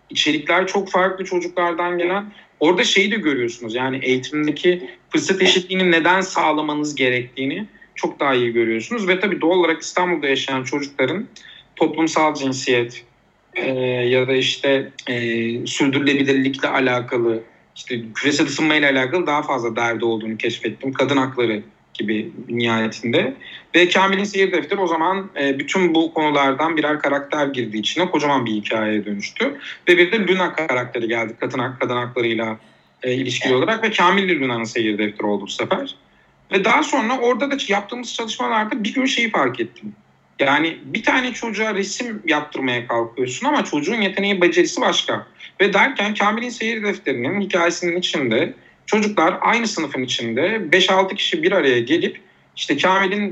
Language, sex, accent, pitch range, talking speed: Turkish, male, native, 130-190 Hz, 140 wpm